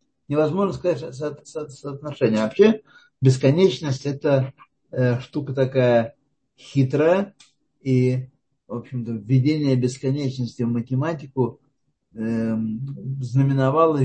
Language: Russian